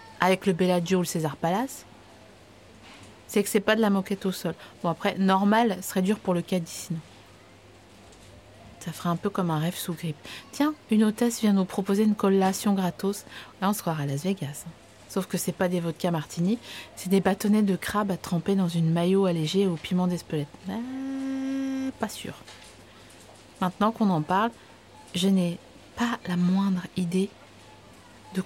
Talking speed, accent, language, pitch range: 175 wpm, French, French, 160-205 Hz